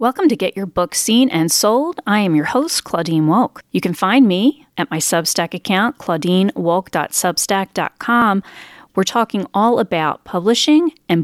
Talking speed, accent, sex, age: 155 wpm, American, female, 40-59